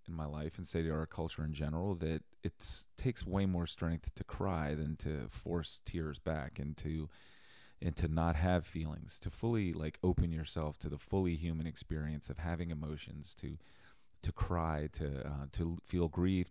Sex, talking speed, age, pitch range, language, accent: male, 185 wpm, 30-49, 75-90 Hz, English, American